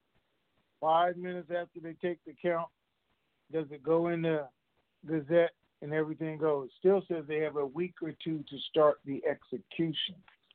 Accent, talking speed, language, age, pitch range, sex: American, 165 wpm, English, 50-69, 135-165 Hz, male